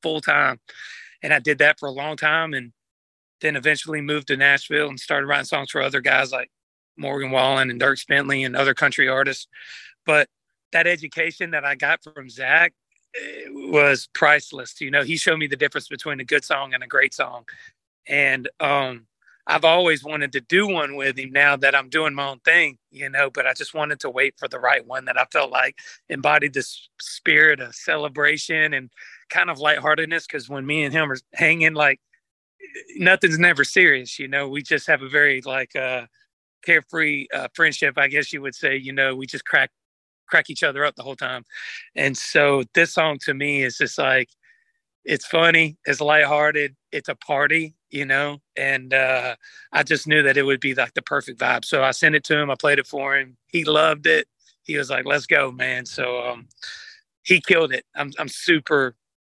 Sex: male